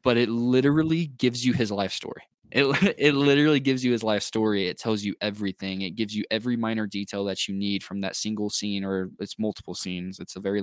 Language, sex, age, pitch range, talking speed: English, male, 20-39, 95-115 Hz, 225 wpm